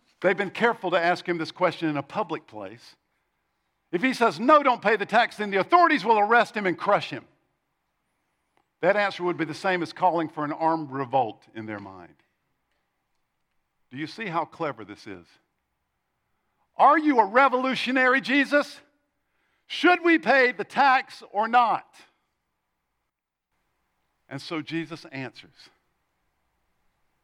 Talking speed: 150 wpm